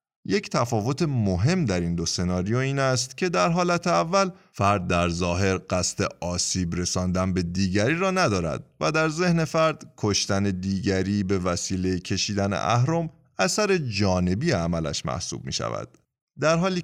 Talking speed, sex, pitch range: 145 wpm, male, 90-135 Hz